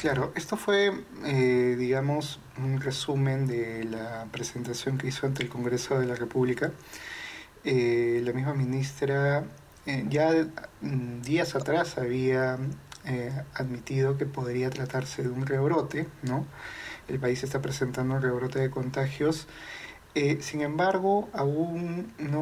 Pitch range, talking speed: 130-150 Hz, 130 wpm